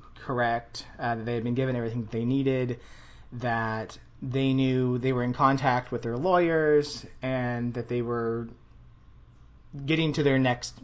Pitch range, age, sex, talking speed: 120-140 Hz, 20-39, male, 160 wpm